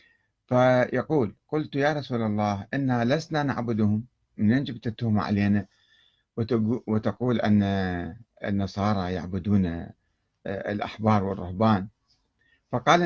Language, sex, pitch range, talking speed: Arabic, male, 100-130 Hz, 90 wpm